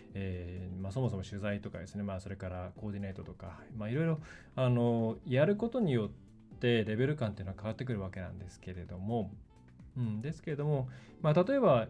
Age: 20-39